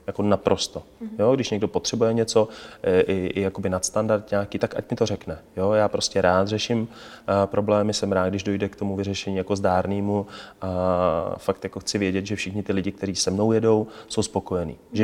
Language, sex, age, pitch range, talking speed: Czech, male, 30-49, 95-105 Hz, 190 wpm